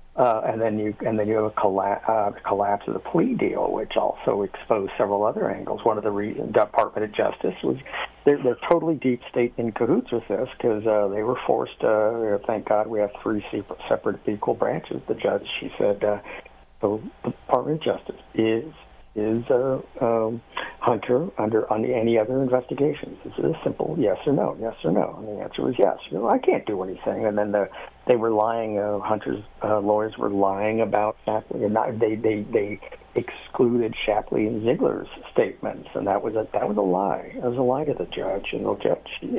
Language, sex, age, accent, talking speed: English, male, 60-79, American, 215 wpm